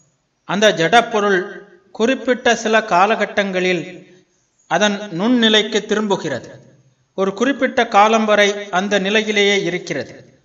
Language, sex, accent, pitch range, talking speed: Tamil, male, native, 180-220 Hz, 90 wpm